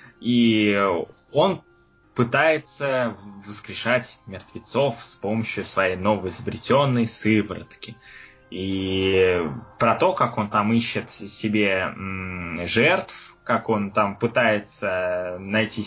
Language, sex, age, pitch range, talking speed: Russian, male, 20-39, 105-125 Hz, 95 wpm